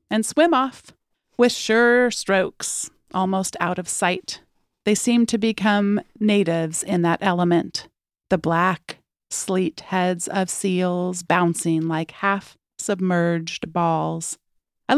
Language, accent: English, American